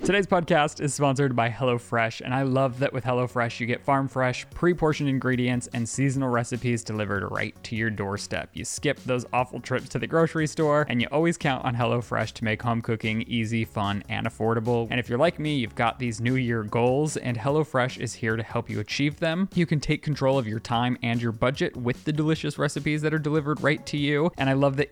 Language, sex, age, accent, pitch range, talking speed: English, male, 20-39, American, 115-140 Hz, 225 wpm